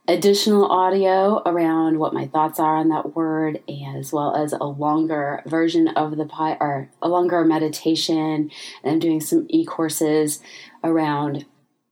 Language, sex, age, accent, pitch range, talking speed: English, female, 20-39, American, 150-180 Hz, 140 wpm